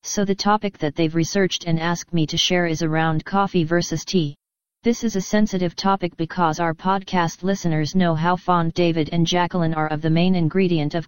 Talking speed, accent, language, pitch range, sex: 200 wpm, American, English, 165-190 Hz, female